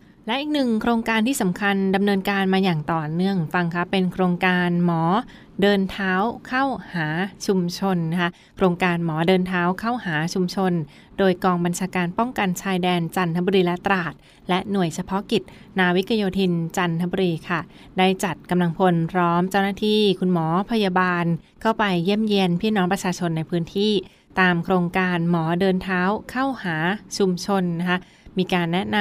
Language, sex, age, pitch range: Thai, female, 20-39, 175-200 Hz